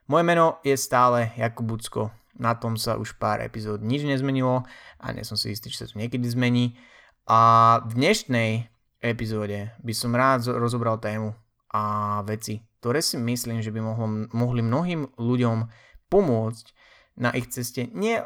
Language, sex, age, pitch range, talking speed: Slovak, male, 20-39, 110-125 Hz, 155 wpm